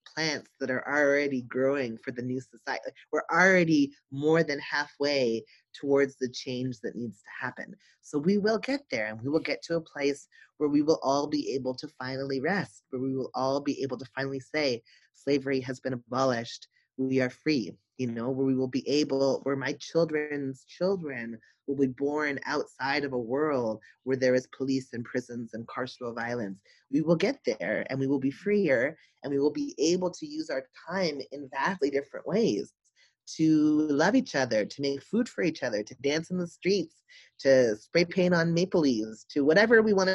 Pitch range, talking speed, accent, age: 130-165 Hz, 195 wpm, American, 30-49